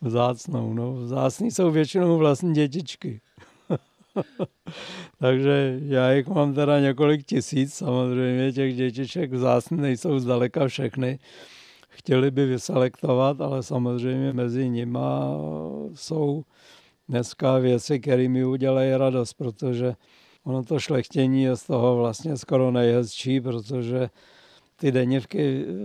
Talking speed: 110 wpm